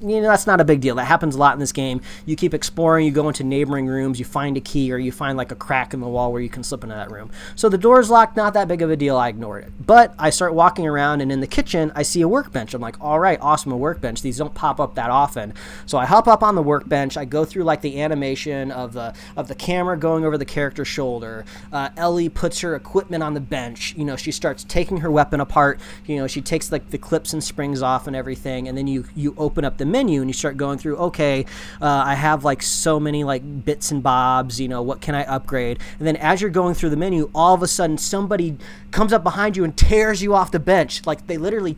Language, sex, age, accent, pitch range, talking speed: English, male, 20-39, American, 135-175 Hz, 270 wpm